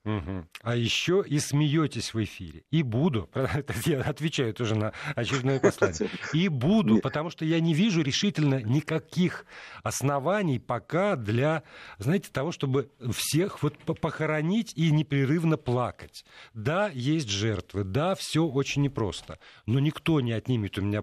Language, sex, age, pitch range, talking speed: Russian, male, 50-69, 115-155 Hz, 135 wpm